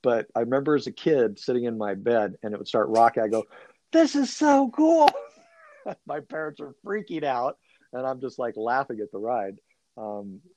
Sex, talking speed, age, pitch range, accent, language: male, 200 wpm, 50-69, 115-185 Hz, American, English